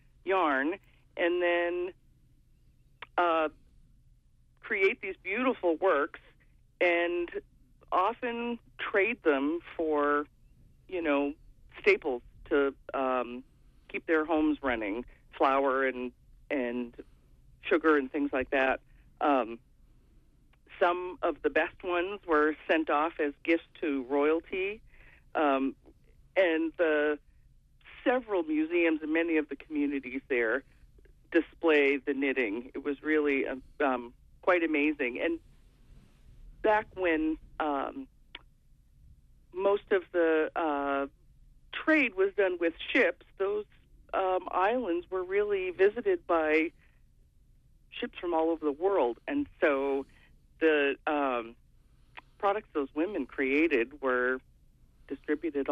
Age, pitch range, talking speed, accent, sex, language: 40-59, 140-185 Hz, 105 wpm, American, female, English